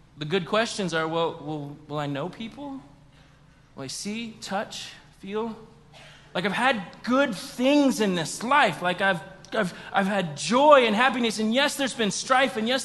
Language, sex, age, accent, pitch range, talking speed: English, male, 20-39, American, 185-270 Hz, 175 wpm